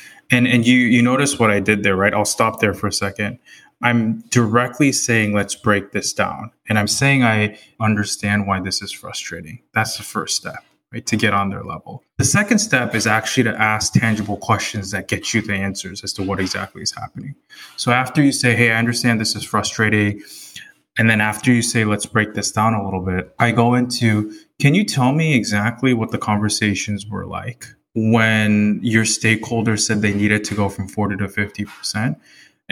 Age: 20-39